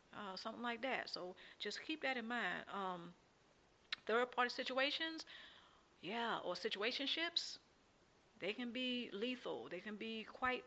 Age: 40-59